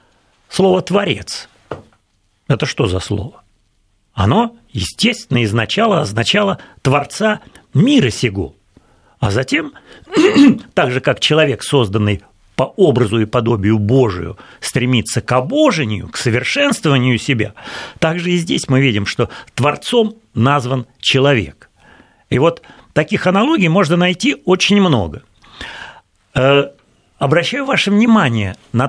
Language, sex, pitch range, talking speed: Russian, male, 115-175 Hz, 110 wpm